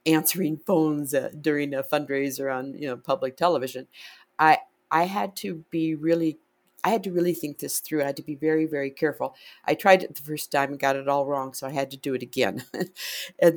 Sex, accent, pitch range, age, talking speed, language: female, American, 140-170 Hz, 50-69, 215 wpm, English